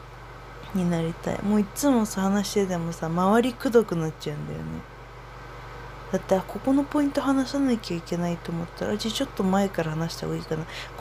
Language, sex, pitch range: Japanese, female, 175-225 Hz